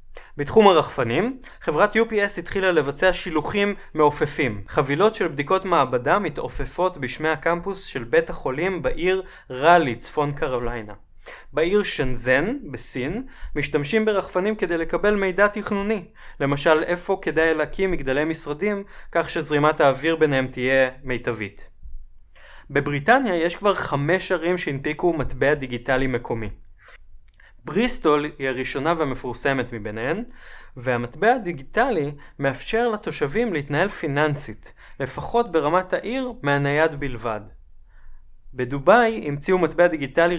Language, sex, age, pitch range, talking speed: English, male, 20-39, 130-185 Hz, 105 wpm